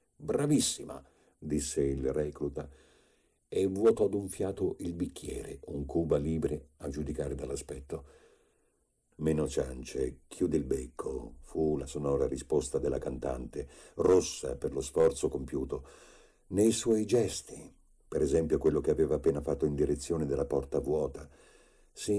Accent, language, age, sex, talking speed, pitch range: native, Italian, 50-69, male, 135 wpm, 75-110 Hz